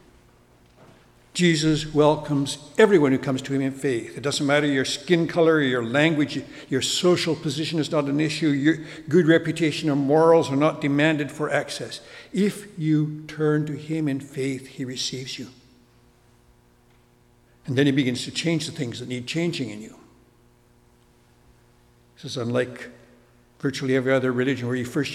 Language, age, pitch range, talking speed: English, 60-79, 120-150 Hz, 155 wpm